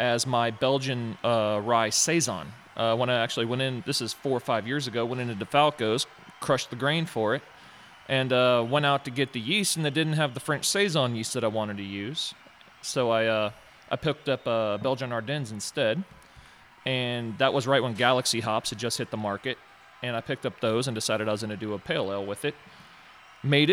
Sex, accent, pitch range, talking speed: male, American, 110-130 Hz, 225 wpm